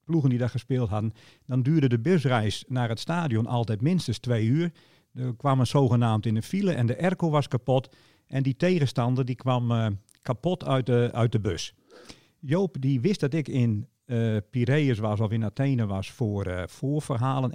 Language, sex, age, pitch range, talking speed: Dutch, male, 50-69, 110-150 Hz, 190 wpm